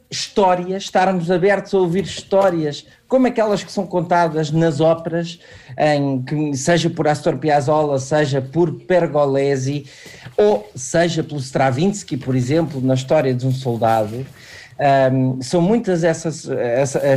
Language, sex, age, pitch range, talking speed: Portuguese, male, 50-69, 150-195 Hz, 120 wpm